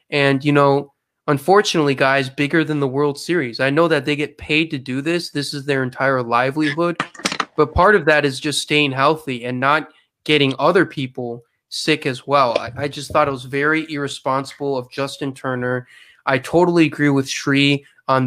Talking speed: 185 wpm